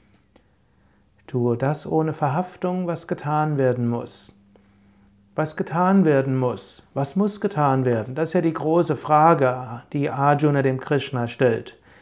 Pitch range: 135-175 Hz